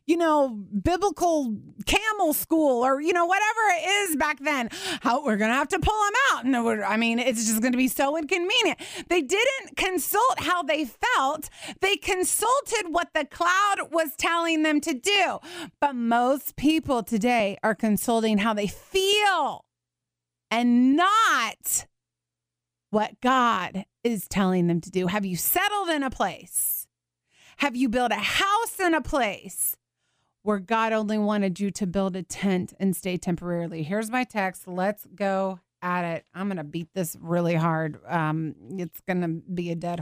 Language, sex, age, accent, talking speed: English, female, 30-49, American, 170 wpm